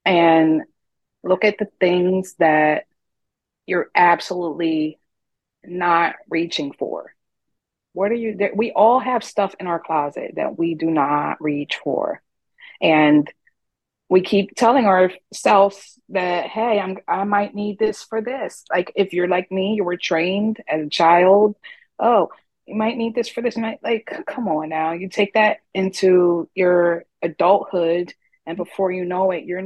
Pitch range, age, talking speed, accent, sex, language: 165-205 Hz, 30-49, 155 wpm, American, female, English